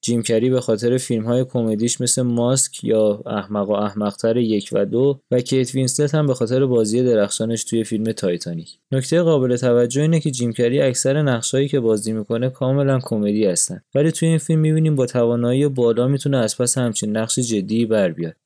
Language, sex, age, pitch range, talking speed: Persian, male, 20-39, 110-135 Hz, 180 wpm